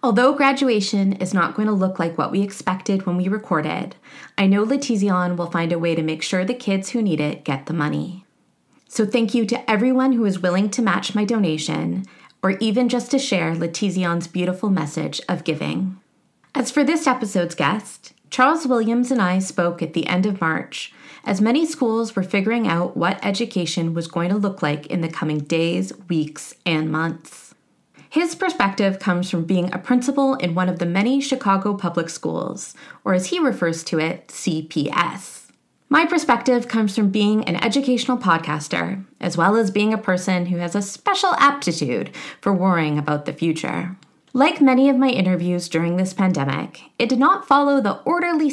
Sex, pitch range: female, 170-240 Hz